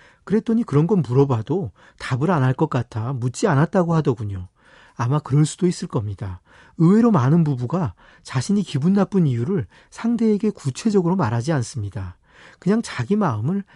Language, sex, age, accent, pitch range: Korean, male, 40-59, native, 130-190 Hz